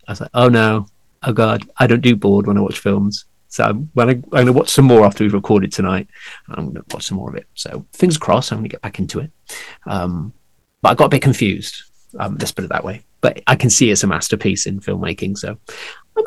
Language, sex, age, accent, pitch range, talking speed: English, male, 40-59, British, 105-150 Hz, 250 wpm